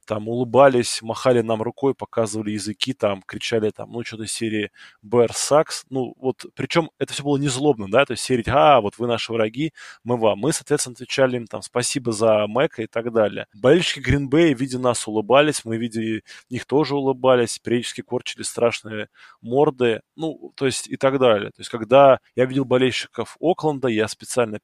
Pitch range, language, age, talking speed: 110-135 Hz, Russian, 20-39, 190 wpm